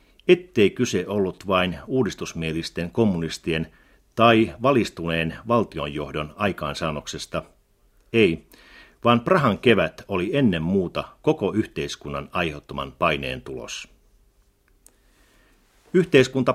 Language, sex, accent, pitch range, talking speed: Finnish, male, native, 80-120 Hz, 85 wpm